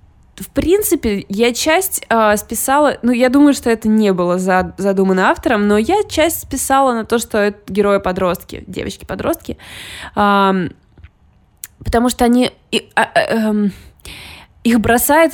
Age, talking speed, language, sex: 20-39, 135 wpm, Russian, female